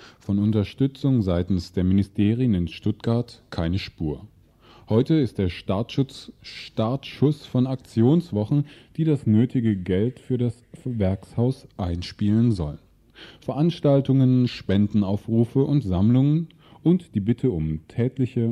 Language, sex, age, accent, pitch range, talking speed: German, male, 20-39, German, 100-135 Hz, 105 wpm